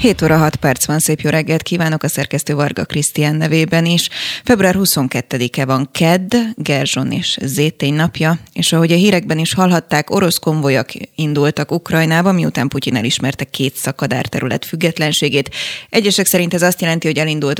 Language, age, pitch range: Hungarian, 20-39, 145-180 Hz